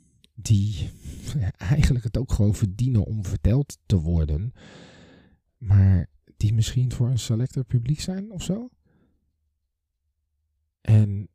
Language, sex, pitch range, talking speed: Dutch, male, 80-115 Hz, 115 wpm